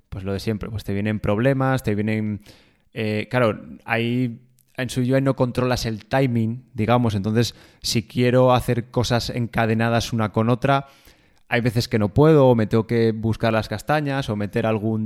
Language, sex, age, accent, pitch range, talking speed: Spanish, male, 20-39, Spanish, 110-130 Hz, 180 wpm